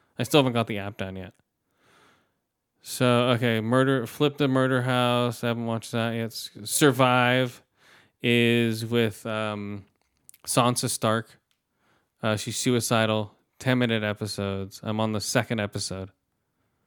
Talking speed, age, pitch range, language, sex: 130 wpm, 20-39, 105-125 Hz, English, male